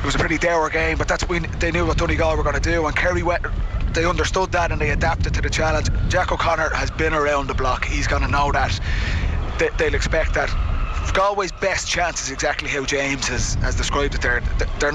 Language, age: English, 20-39